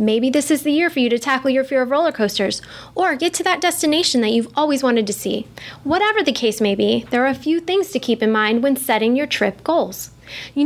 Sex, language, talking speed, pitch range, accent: female, English, 255 wpm, 225-285 Hz, American